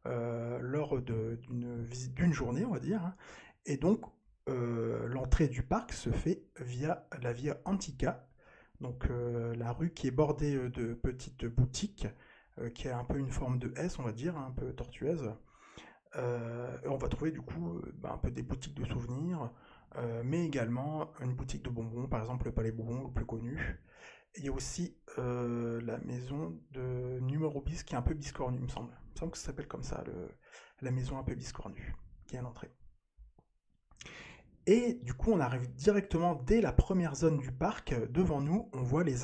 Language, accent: French, French